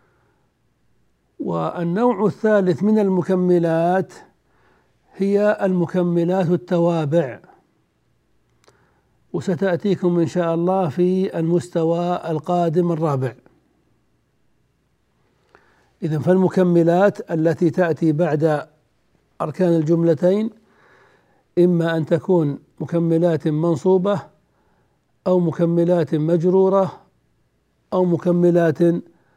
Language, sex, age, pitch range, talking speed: Arabic, male, 60-79, 155-185 Hz, 65 wpm